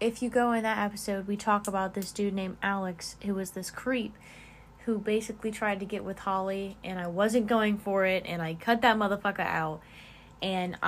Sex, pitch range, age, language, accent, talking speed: female, 185-230 Hz, 20-39, English, American, 205 wpm